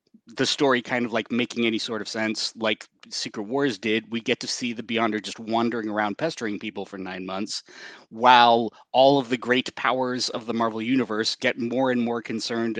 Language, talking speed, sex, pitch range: English, 200 wpm, male, 105-125 Hz